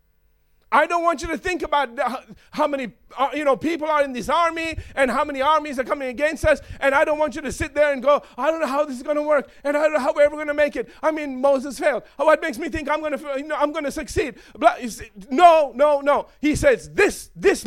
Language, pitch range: English, 235-310 Hz